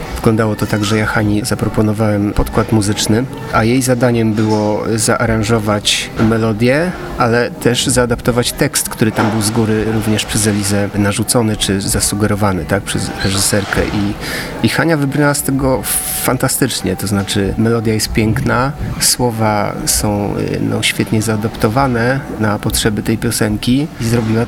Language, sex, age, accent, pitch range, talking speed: Polish, male, 40-59, native, 105-120 Hz, 135 wpm